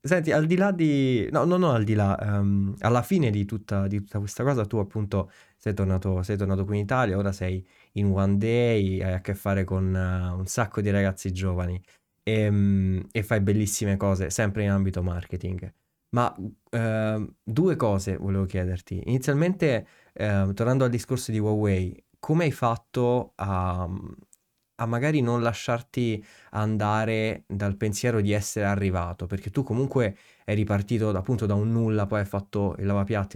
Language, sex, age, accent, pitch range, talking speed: Italian, male, 20-39, native, 95-115 Hz, 175 wpm